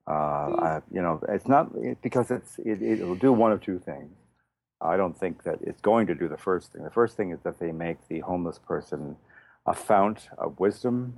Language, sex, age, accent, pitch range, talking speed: English, male, 50-69, American, 85-110 Hz, 215 wpm